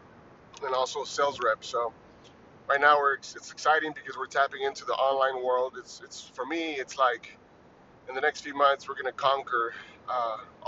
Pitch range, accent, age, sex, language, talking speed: 125-150 Hz, American, 30-49, male, English, 190 wpm